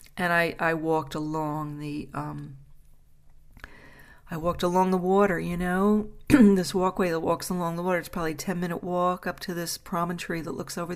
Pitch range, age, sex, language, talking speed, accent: 165-210 Hz, 40-59, female, English, 185 wpm, American